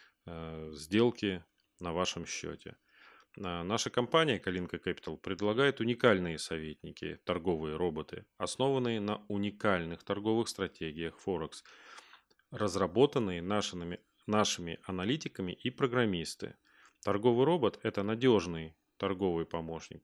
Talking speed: 95 wpm